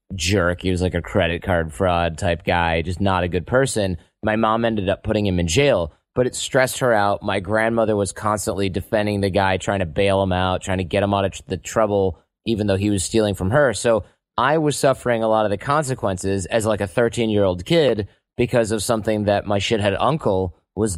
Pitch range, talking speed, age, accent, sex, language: 95-115 Hz, 225 wpm, 30-49, American, male, English